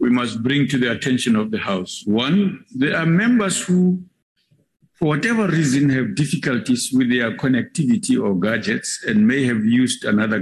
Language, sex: English, male